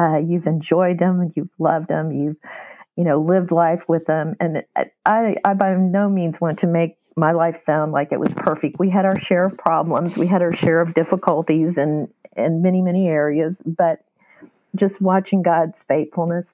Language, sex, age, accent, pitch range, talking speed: English, female, 50-69, American, 165-235 Hz, 190 wpm